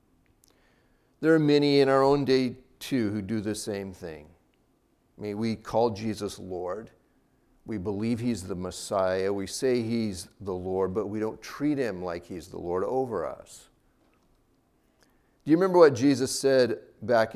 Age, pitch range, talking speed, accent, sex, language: 50-69, 110-165 Hz, 165 wpm, American, male, English